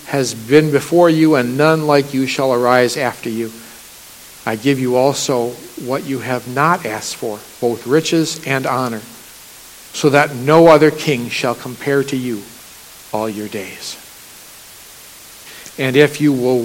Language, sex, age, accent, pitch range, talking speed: English, male, 60-79, American, 120-170 Hz, 150 wpm